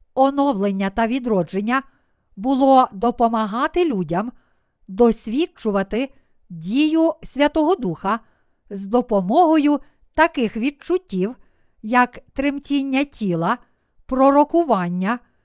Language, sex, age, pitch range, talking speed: Ukrainian, female, 50-69, 215-290 Hz, 70 wpm